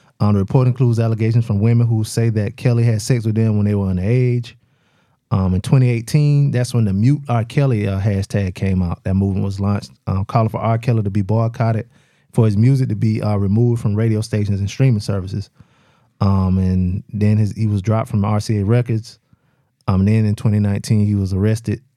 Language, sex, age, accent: English, male, 20-39, American